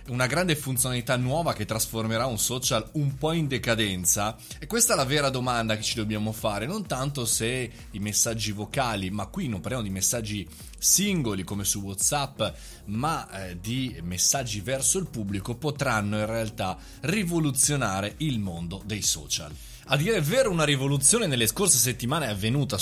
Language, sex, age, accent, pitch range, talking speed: Italian, male, 20-39, native, 105-140 Hz, 165 wpm